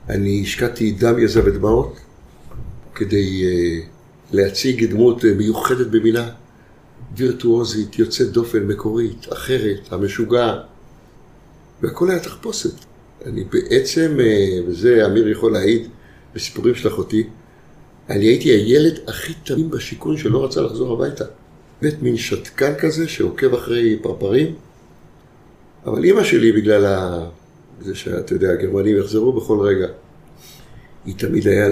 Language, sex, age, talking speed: Hebrew, male, 60-79, 120 wpm